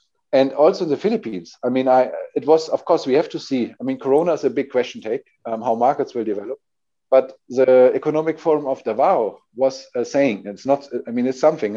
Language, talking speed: English, 220 wpm